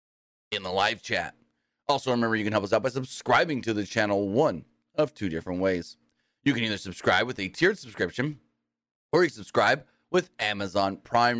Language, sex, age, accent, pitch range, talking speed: English, male, 30-49, American, 100-135 Hz, 185 wpm